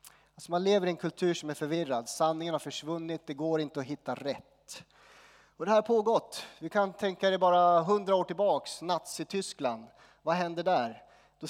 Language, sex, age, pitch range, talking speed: Swedish, male, 30-49, 140-175 Hz, 190 wpm